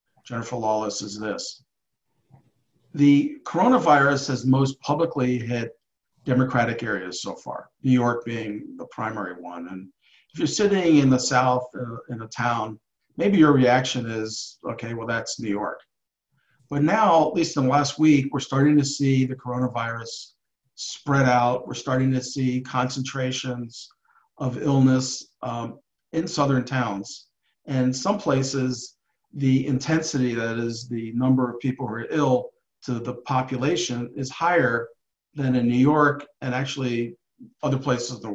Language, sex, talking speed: English, male, 150 wpm